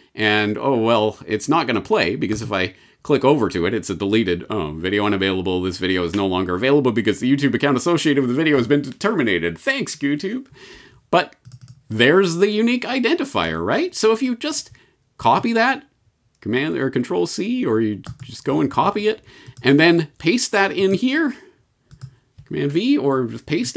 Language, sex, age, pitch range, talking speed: English, male, 40-59, 110-170 Hz, 185 wpm